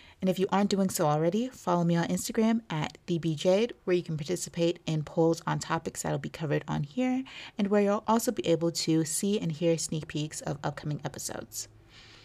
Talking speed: 205 wpm